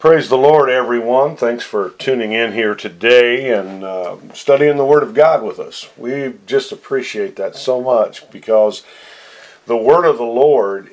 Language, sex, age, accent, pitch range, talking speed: English, male, 50-69, American, 115-155 Hz, 170 wpm